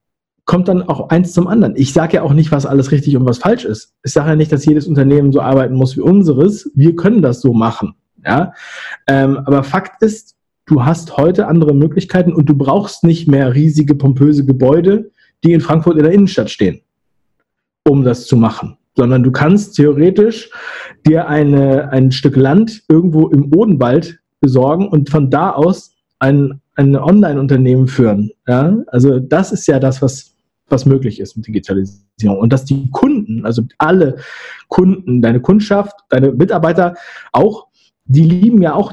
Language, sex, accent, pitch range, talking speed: German, male, German, 130-175 Hz, 170 wpm